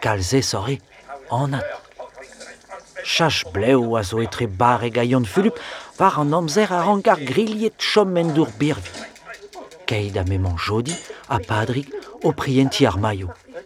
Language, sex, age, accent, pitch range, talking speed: French, male, 40-59, French, 115-175 Hz, 165 wpm